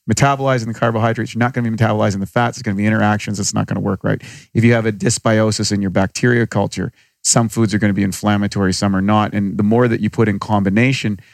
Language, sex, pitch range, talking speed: English, male, 110-135 Hz, 260 wpm